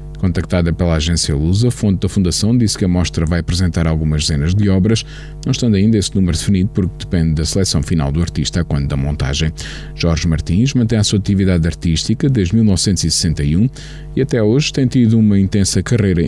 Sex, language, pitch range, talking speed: male, Portuguese, 80-115 Hz, 190 wpm